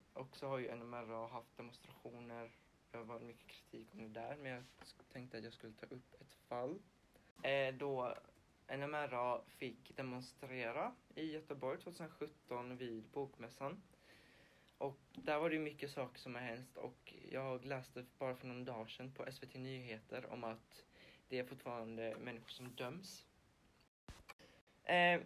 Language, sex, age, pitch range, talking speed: Swedish, male, 20-39, 120-140 Hz, 150 wpm